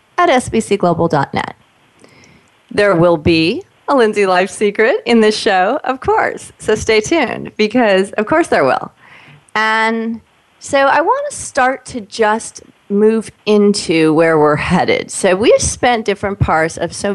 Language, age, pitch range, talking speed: English, 30-49, 175-240 Hz, 150 wpm